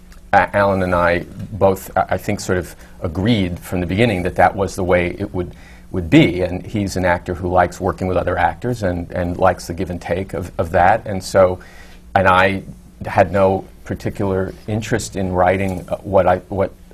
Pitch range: 90-100 Hz